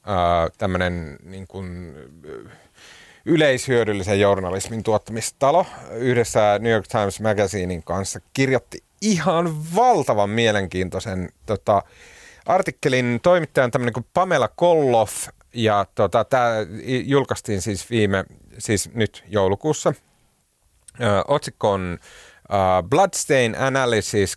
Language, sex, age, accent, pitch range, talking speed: Finnish, male, 30-49, native, 95-125 Hz, 95 wpm